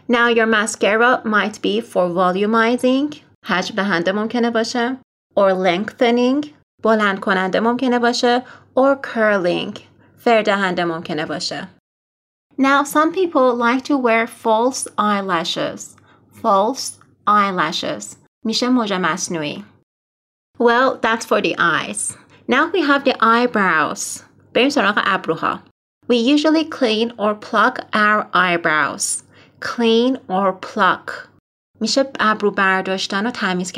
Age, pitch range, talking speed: 30-49, 195-245 Hz, 80 wpm